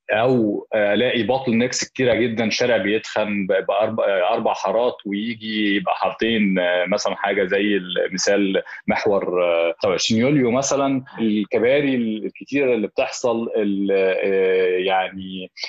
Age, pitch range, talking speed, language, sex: 20-39, 100-140 Hz, 95 wpm, Arabic, male